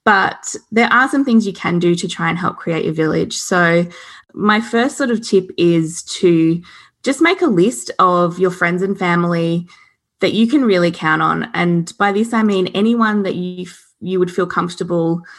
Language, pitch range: English, 165-215 Hz